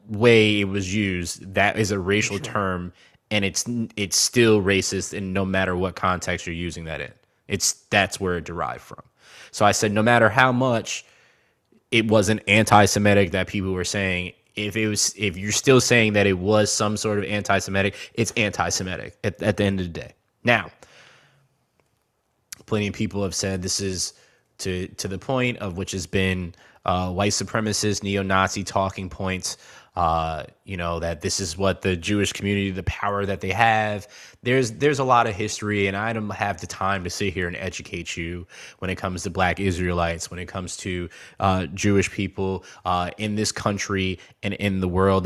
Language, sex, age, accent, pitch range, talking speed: Finnish, male, 20-39, American, 95-105 Hz, 190 wpm